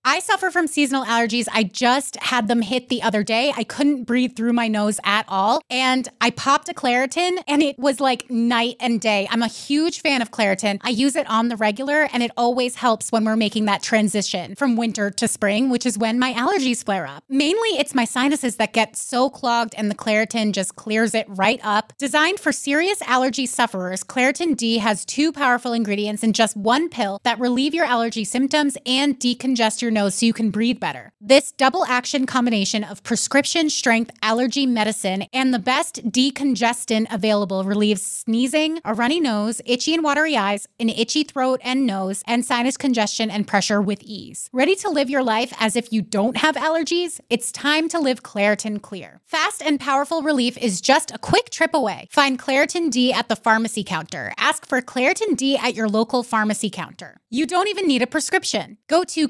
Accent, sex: American, female